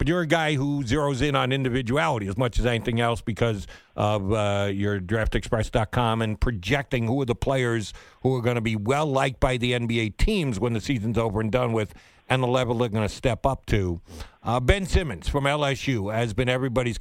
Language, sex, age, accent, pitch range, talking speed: English, male, 50-69, American, 115-165 Hz, 210 wpm